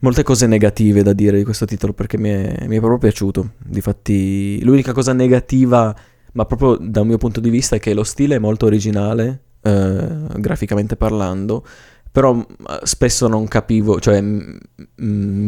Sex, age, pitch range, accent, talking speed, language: male, 20-39, 100-115 Hz, native, 165 wpm, Italian